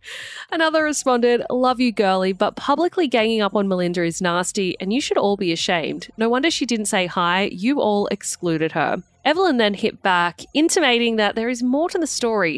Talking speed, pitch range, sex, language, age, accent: 195 wpm, 200-280 Hz, female, English, 20-39, Australian